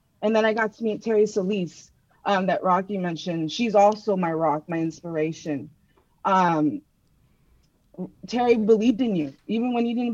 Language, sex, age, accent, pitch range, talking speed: English, female, 20-39, American, 185-220 Hz, 160 wpm